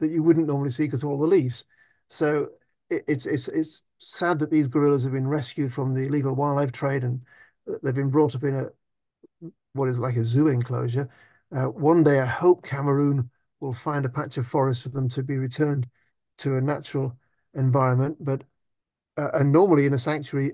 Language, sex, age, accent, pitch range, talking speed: English, male, 50-69, British, 135-155 Hz, 195 wpm